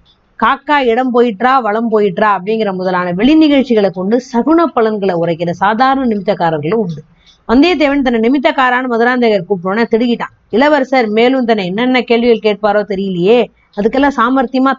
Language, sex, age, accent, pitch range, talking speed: Tamil, female, 20-39, native, 215-265 Hz, 130 wpm